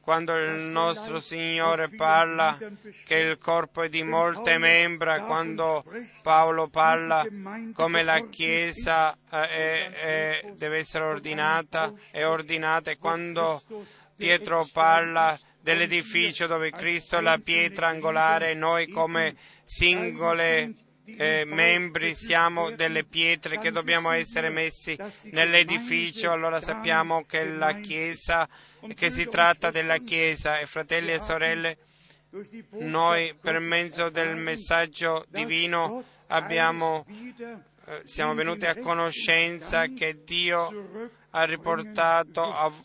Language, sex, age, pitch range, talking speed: Italian, male, 30-49, 160-170 Hz, 110 wpm